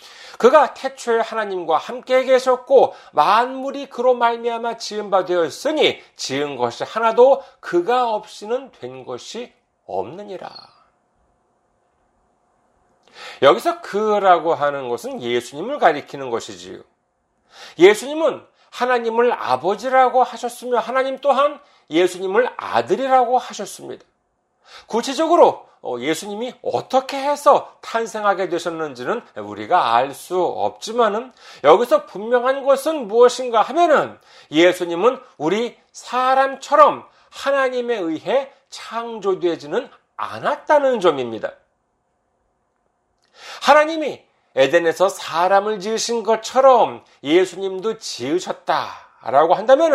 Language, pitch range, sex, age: Korean, 200-270 Hz, male, 40-59